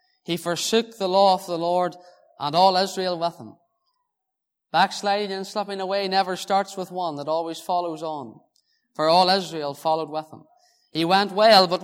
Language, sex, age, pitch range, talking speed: English, male, 20-39, 175-210 Hz, 170 wpm